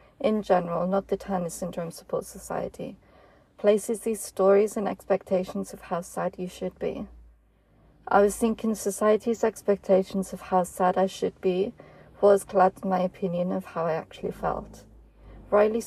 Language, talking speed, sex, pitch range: English, 155 wpm, female, 180-210 Hz